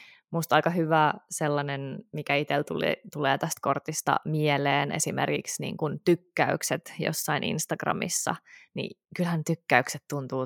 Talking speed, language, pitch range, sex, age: 110 wpm, Finnish, 140-170 Hz, female, 20-39